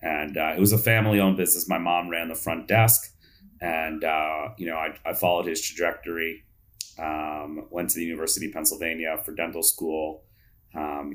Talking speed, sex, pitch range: 185 wpm, male, 80-95 Hz